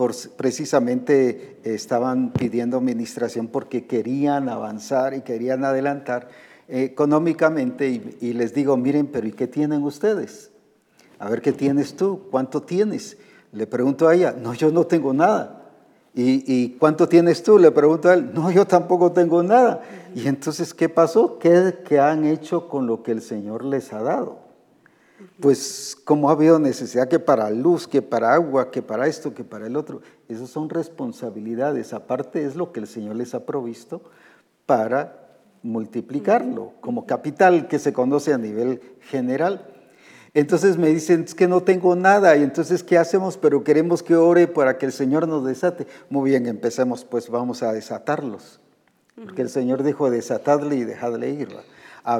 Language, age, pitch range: Spanish, 50-69, 125-170 Hz